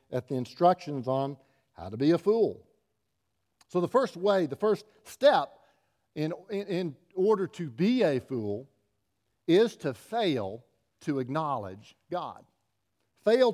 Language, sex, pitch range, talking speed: English, male, 115-170 Hz, 135 wpm